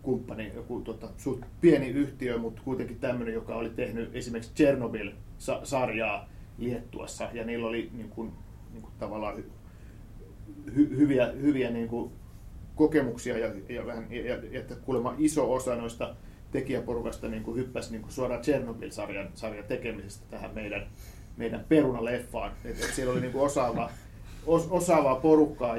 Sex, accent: male, native